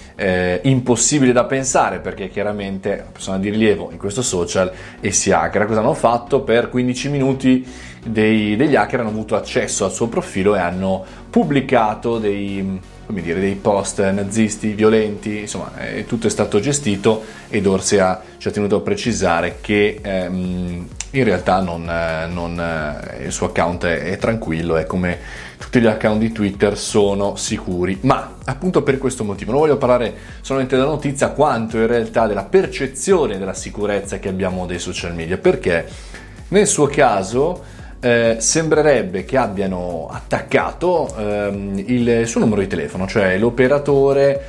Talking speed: 155 wpm